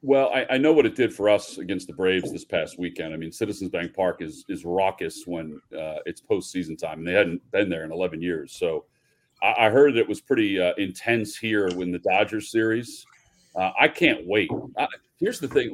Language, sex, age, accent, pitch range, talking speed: English, male, 40-59, American, 90-135 Hz, 225 wpm